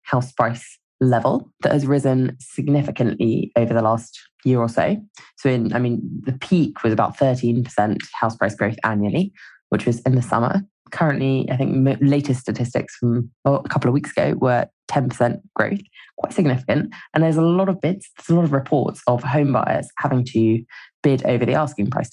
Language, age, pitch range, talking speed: English, 20-39, 120-150 Hz, 190 wpm